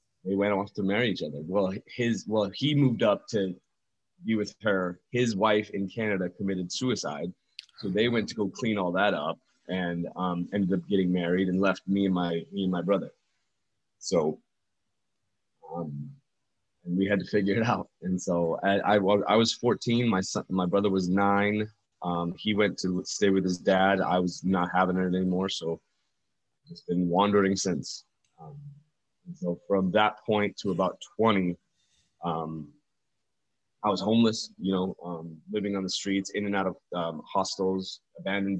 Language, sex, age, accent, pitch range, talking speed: English, male, 20-39, American, 90-105 Hz, 180 wpm